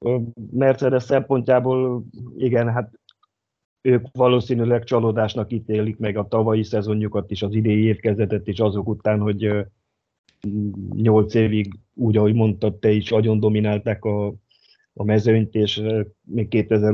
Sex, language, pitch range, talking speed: male, Hungarian, 105-115 Hz, 120 wpm